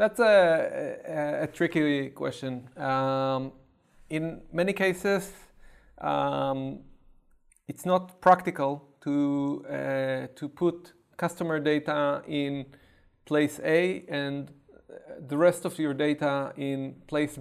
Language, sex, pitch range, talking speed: Slovak, male, 140-170 Hz, 105 wpm